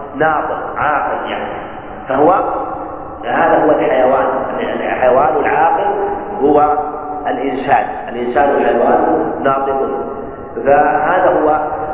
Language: Arabic